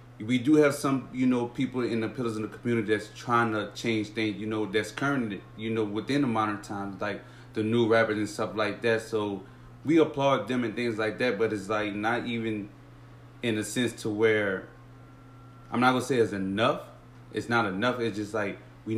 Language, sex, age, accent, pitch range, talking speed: English, male, 30-49, American, 105-120 Hz, 215 wpm